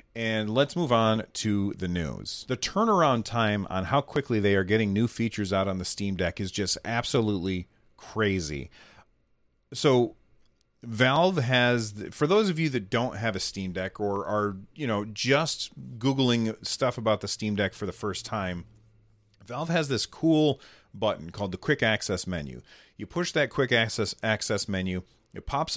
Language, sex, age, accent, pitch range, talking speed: English, male, 30-49, American, 95-125 Hz, 170 wpm